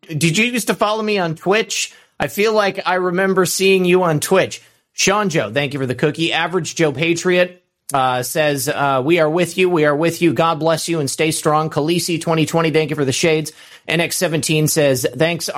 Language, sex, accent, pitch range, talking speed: English, male, American, 140-170 Hz, 210 wpm